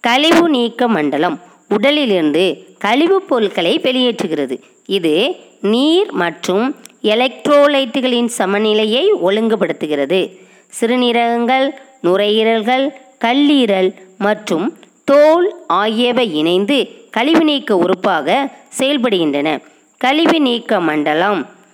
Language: Tamil